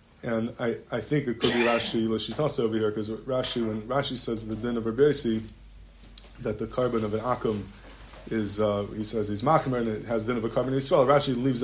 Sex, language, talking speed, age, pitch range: male, English, 235 wpm, 20-39, 110-130 Hz